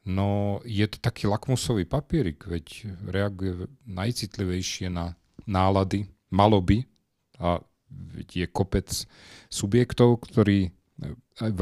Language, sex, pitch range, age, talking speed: Slovak, male, 90-105 Hz, 40-59, 100 wpm